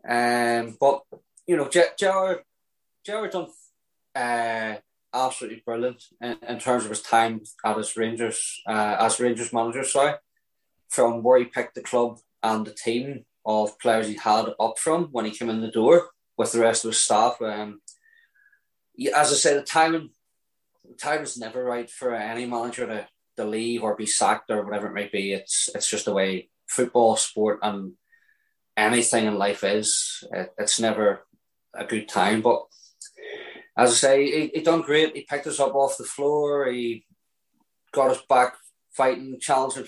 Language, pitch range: English, 115-145 Hz